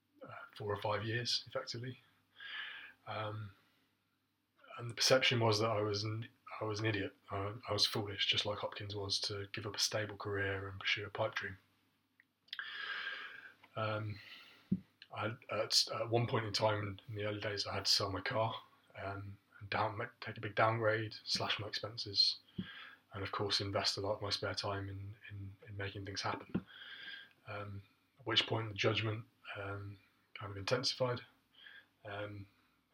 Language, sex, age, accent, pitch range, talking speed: English, male, 20-39, British, 100-110 Hz, 165 wpm